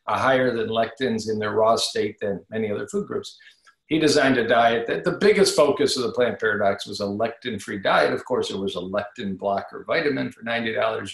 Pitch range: 115-155 Hz